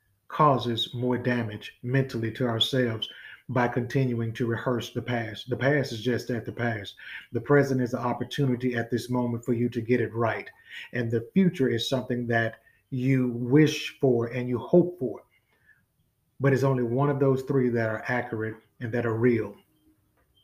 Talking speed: 175 wpm